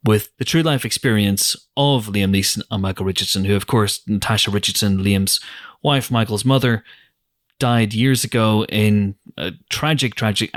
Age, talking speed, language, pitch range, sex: 30-49, 155 wpm, English, 95-115 Hz, male